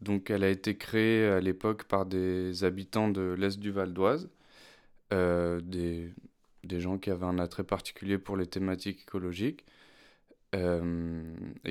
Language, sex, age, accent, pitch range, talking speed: French, male, 20-39, French, 90-100 Hz, 145 wpm